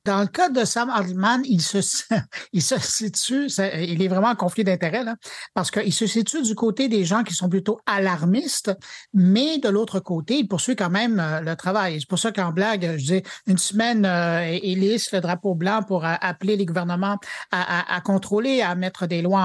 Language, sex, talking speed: French, male, 200 wpm